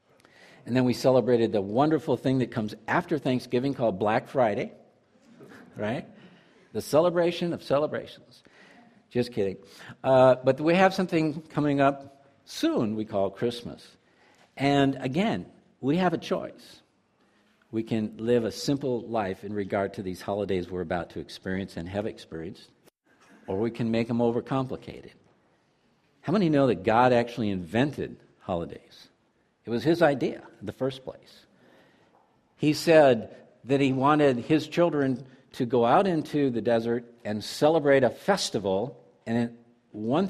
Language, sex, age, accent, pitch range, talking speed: English, male, 60-79, American, 115-150 Hz, 145 wpm